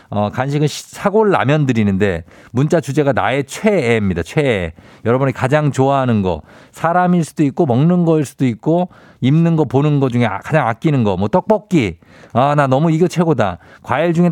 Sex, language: male, Korean